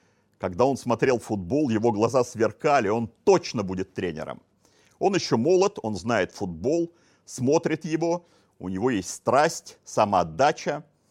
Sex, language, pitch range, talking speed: male, Russian, 110-160 Hz, 130 wpm